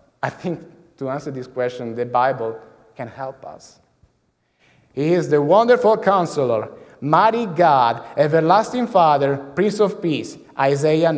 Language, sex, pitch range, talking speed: English, male, 135-190 Hz, 130 wpm